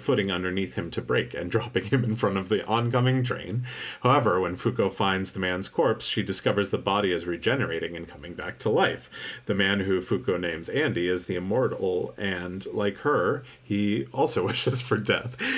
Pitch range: 100-130 Hz